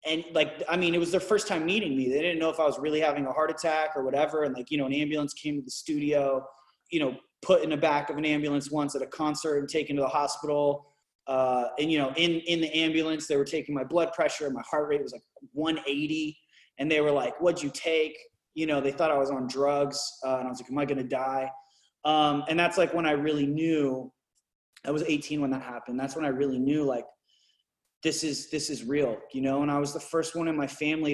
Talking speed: 260 wpm